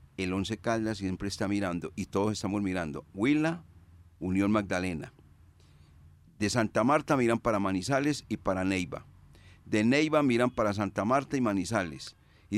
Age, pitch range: 40-59, 95-125 Hz